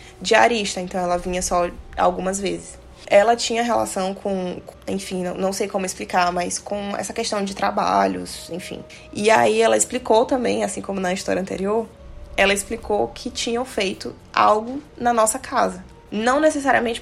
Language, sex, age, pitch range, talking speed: Portuguese, female, 20-39, 180-235 Hz, 150 wpm